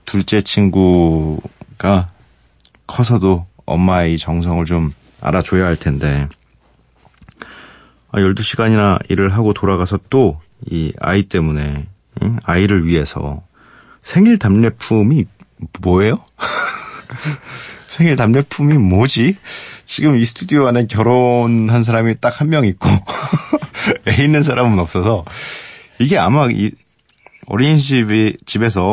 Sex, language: male, Korean